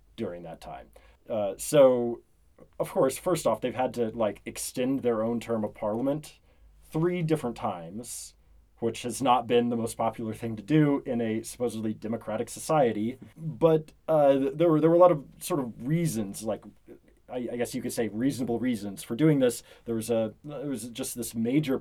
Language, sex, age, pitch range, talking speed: English, male, 30-49, 110-125 Hz, 190 wpm